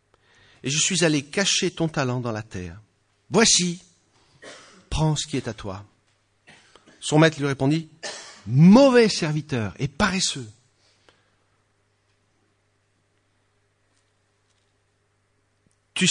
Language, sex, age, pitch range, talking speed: English, male, 50-69, 100-145 Hz, 95 wpm